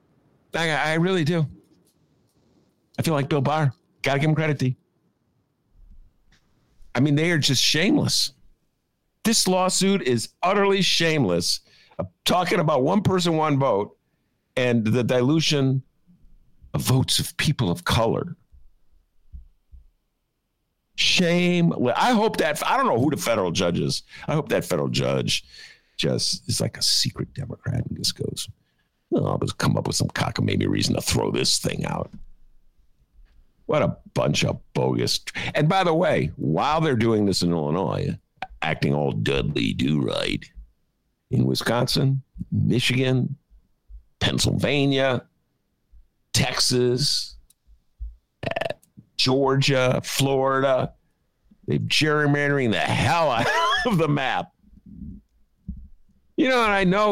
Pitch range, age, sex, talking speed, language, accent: 105-160 Hz, 50-69, male, 125 wpm, English, American